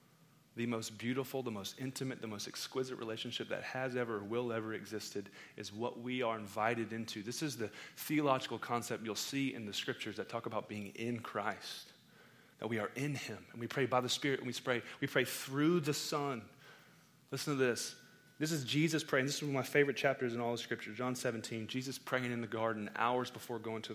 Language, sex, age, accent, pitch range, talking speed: English, male, 30-49, American, 115-145 Hz, 215 wpm